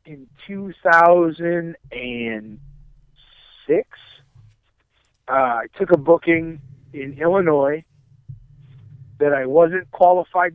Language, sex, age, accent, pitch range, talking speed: English, male, 50-69, American, 125-170 Hz, 75 wpm